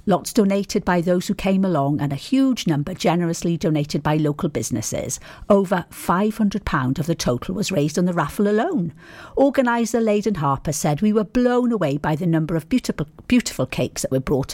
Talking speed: 185 wpm